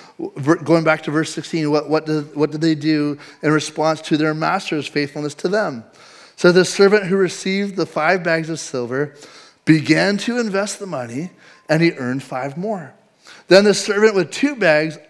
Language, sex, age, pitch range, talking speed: English, male, 30-49, 155-205 Hz, 175 wpm